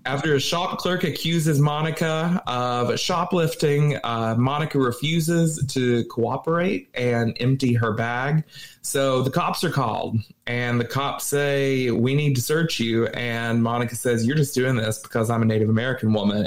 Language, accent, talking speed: English, American, 160 wpm